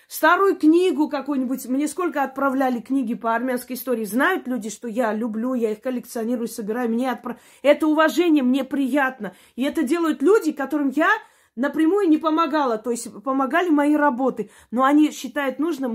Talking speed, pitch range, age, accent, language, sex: 160 wpm, 240-325 Hz, 20-39, native, Russian, female